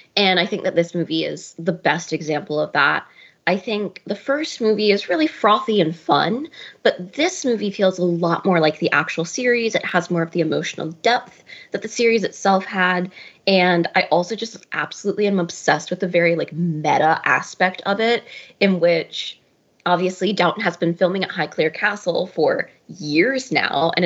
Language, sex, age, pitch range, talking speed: English, female, 20-39, 170-205 Hz, 185 wpm